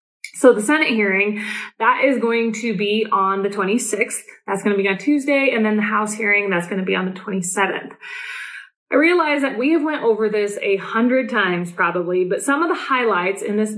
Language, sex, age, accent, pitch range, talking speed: English, female, 20-39, American, 195-250 Hz, 215 wpm